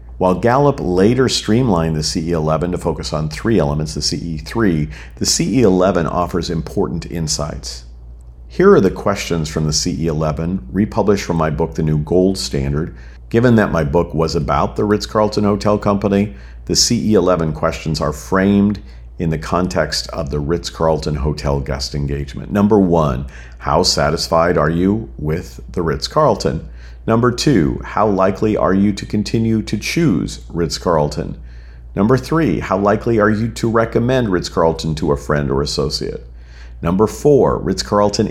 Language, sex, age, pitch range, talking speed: English, male, 50-69, 75-100 Hz, 145 wpm